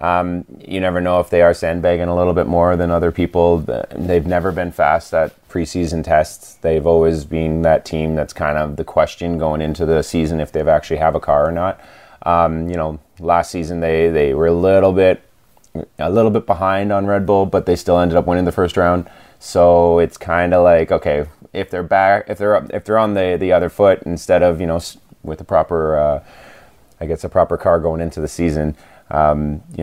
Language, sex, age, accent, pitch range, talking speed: English, male, 30-49, American, 75-90 Hz, 220 wpm